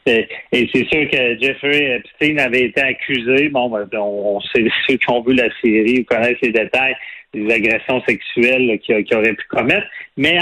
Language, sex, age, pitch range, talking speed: French, male, 40-59, 120-150 Hz, 175 wpm